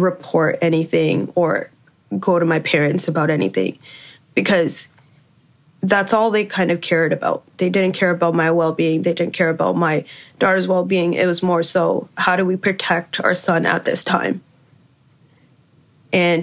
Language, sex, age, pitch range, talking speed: English, female, 20-39, 165-210 Hz, 160 wpm